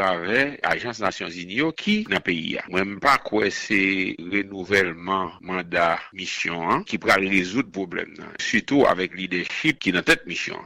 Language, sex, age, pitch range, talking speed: English, male, 60-79, 95-145 Hz, 160 wpm